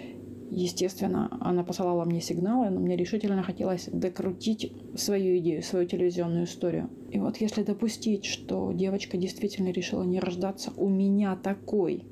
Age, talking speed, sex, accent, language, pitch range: 20-39, 140 wpm, female, native, Ukrainian, 180-220 Hz